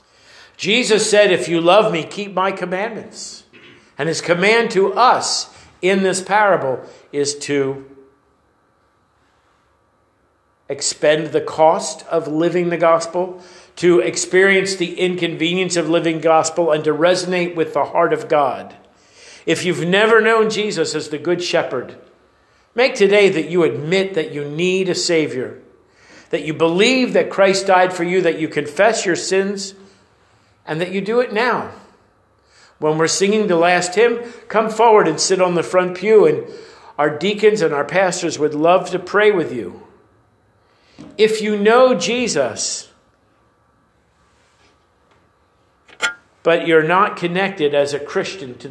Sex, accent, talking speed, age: male, American, 145 wpm, 50-69